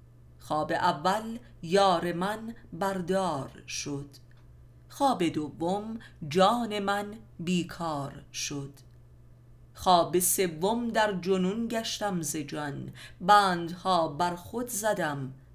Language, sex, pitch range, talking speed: Persian, female, 135-190 Hz, 80 wpm